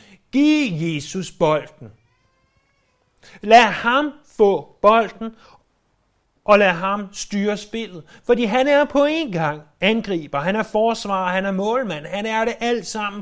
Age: 30-49